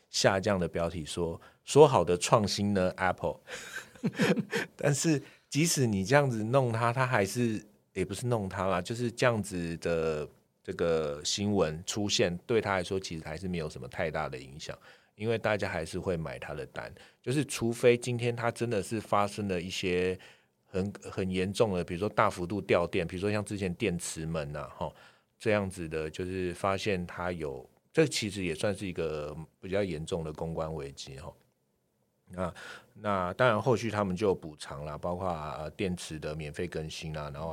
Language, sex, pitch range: Chinese, male, 80-105 Hz